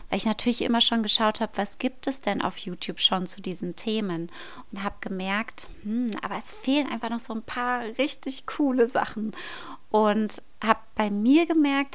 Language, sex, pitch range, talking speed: German, female, 190-250 Hz, 185 wpm